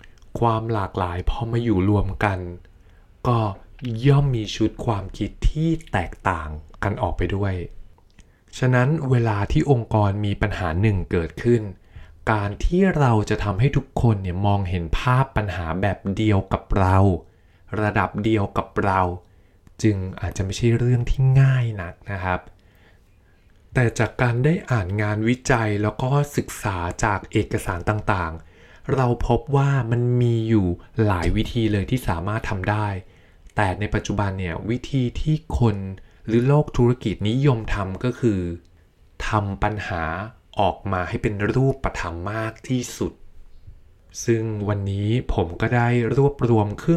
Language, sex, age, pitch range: Thai, male, 20-39, 95-120 Hz